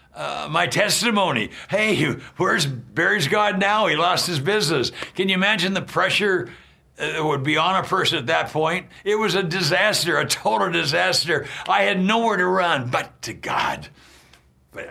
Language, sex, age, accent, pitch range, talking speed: English, male, 60-79, American, 115-180 Hz, 170 wpm